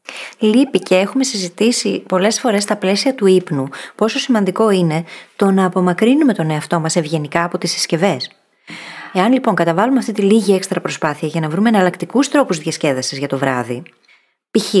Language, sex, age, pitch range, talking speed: Greek, female, 20-39, 170-220 Hz, 165 wpm